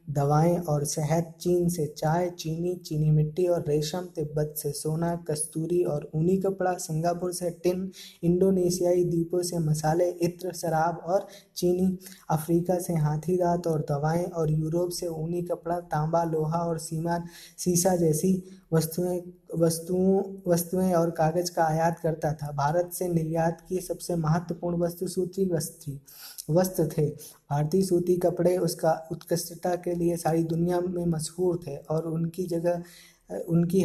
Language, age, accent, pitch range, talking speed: Hindi, 20-39, native, 160-180 Hz, 150 wpm